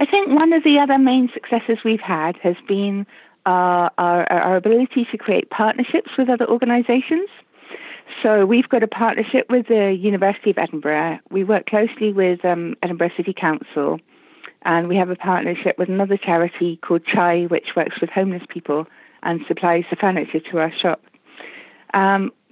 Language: English